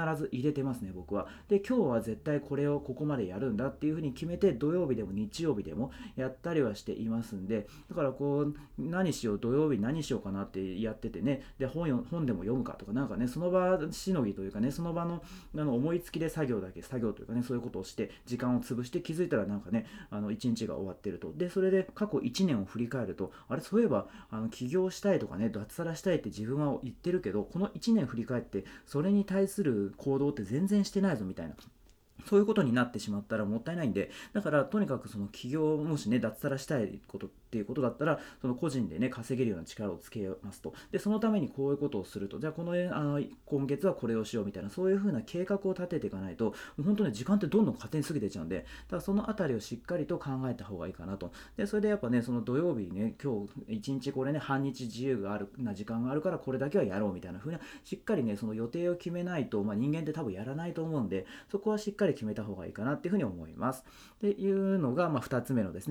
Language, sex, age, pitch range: Japanese, male, 40-59, 110-175 Hz